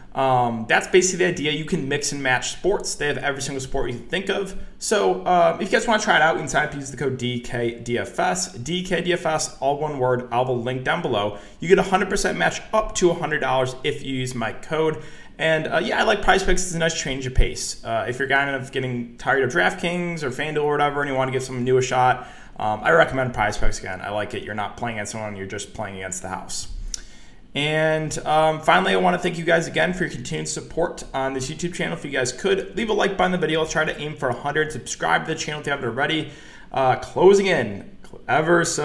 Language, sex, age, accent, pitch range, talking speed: English, male, 20-39, American, 120-155 Hz, 250 wpm